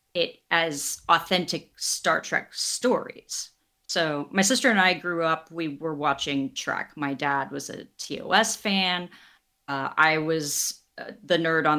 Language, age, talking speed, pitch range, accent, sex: English, 30-49, 155 wpm, 150-185 Hz, American, female